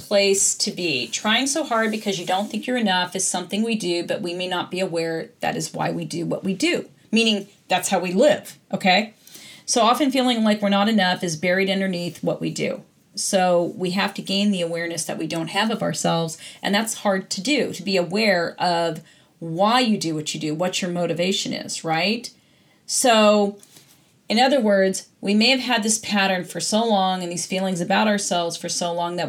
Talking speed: 215 wpm